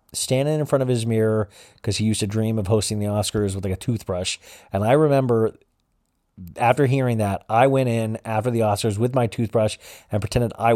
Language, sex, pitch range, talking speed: English, male, 110-140 Hz, 205 wpm